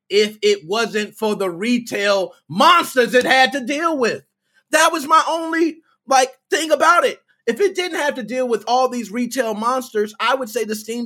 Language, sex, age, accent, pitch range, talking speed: English, male, 30-49, American, 175-250 Hz, 195 wpm